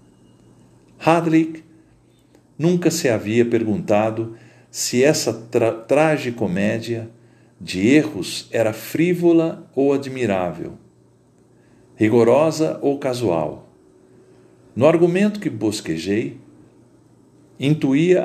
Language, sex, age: Portuguese, male, 50-69